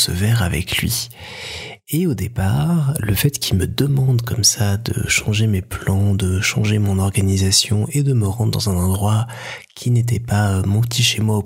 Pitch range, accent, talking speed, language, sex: 100-120 Hz, French, 185 wpm, French, male